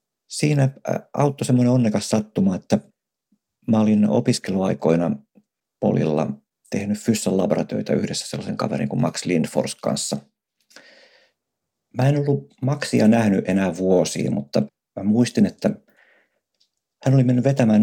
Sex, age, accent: male, 50-69, native